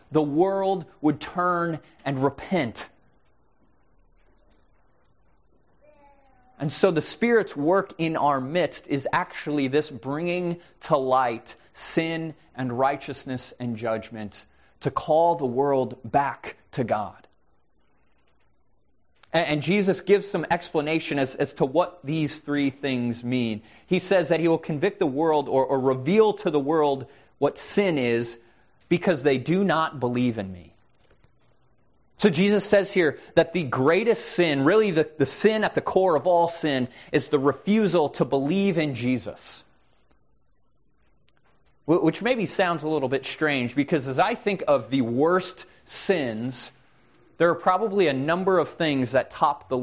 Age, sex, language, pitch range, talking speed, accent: 30-49, male, English, 125-175 Hz, 145 wpm, American